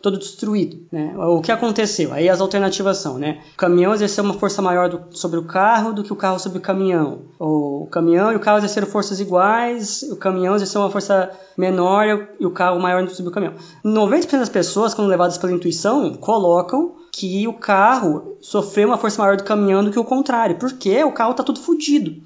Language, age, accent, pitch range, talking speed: Portuguese, 20-39, Brazilian, 175-220 Hz, 210 wpm